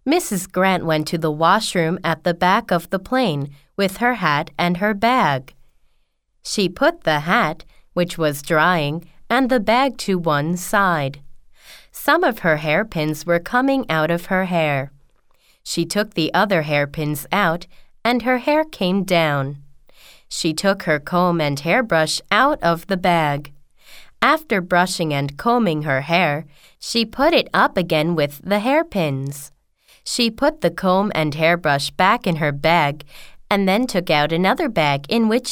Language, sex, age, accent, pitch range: Korean, female, 20-39, American, 155-205 Hz